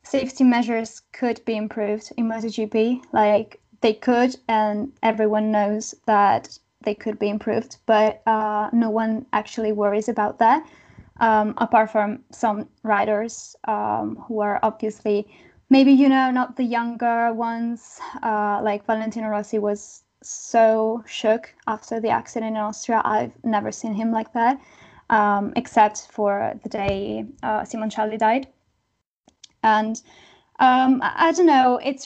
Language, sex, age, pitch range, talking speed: English, female, 10-29, 215-250 Hz, 140 wpm